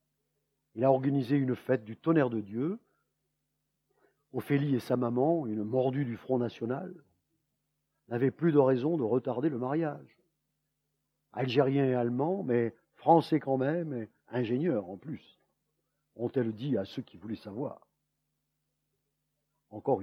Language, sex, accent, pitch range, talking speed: French, male, French, 110-140 Hz, 130 wpm